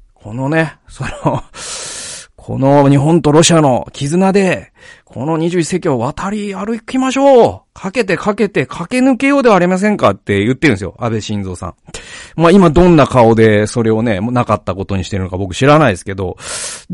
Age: 40-59